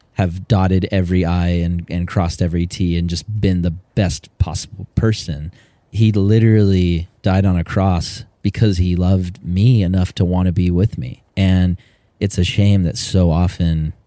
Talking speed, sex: 170 wpm, male